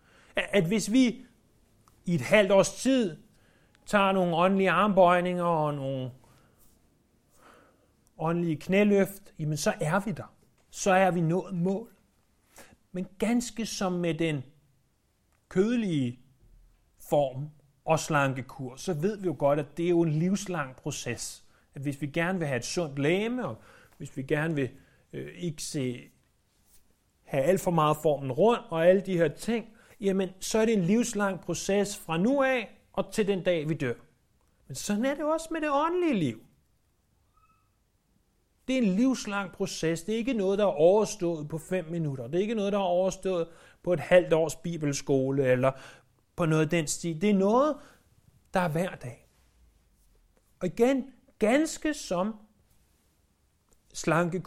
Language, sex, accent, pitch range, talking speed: Danish, male, native, 145-200 Hz, 160 wpm